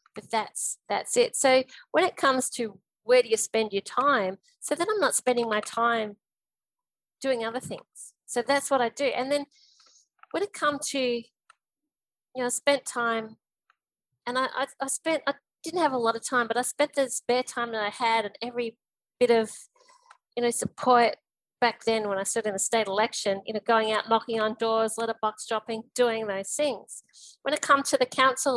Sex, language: female, English